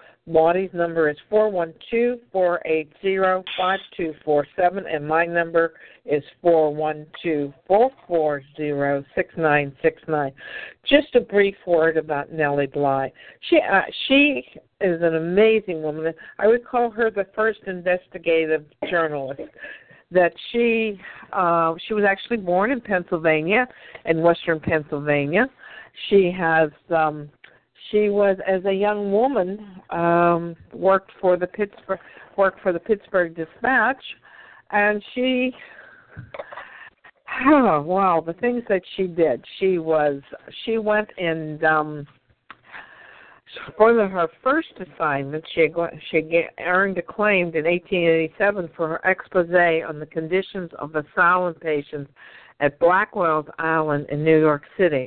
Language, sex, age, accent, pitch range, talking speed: English, female, 60-79, American, 155-200 Hz, 115 wpm